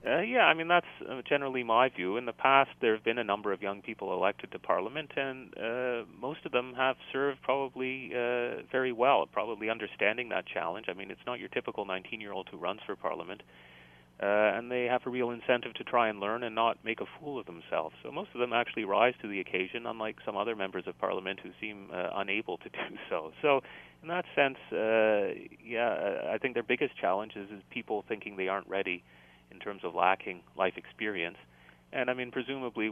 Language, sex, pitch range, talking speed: English, male, 95-120 Hz, 210 wpm